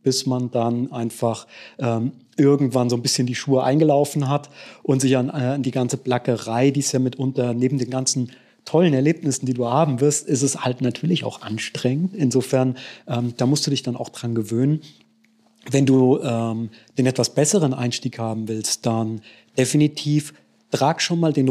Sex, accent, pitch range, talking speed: male, German, 120-140 Hz, 180 wpm